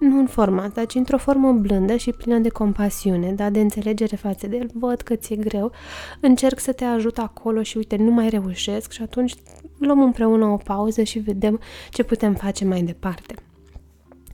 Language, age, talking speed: Romanian, 20-39, 190 wpm